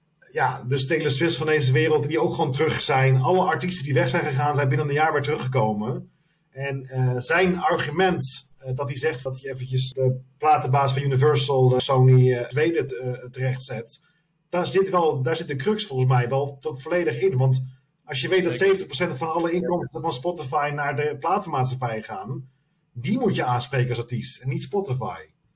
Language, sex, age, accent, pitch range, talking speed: Dutch, male, 40-59, Dutch, 130-180 Hz, 185 wpm